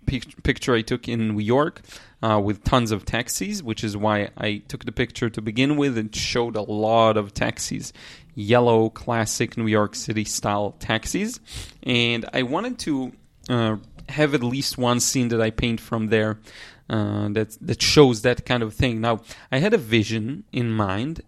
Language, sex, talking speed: English, male, 180 wpm